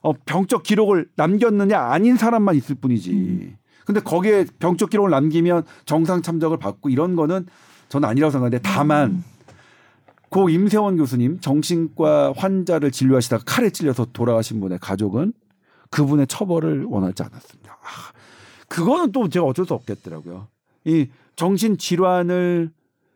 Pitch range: 140-190 Hz